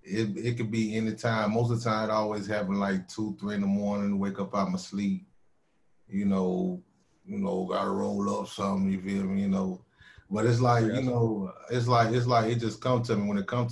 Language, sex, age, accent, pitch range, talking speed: English, male, 20-39, American, 95-110 Hz, 240 wpm